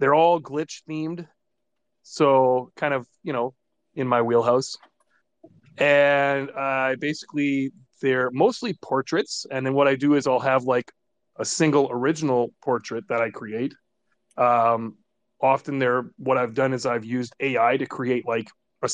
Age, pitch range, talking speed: 30-49, 125-145 Hz, 145 wpm